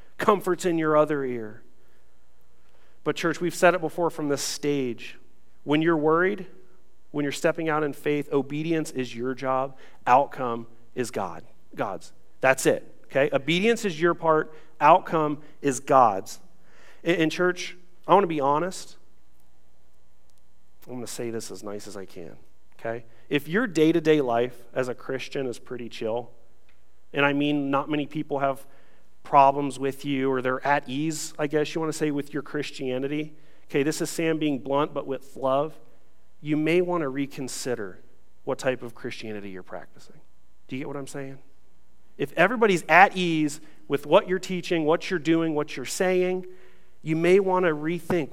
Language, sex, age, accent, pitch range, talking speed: English, male, 40-59, American, 125-160 Hz, 170 wpm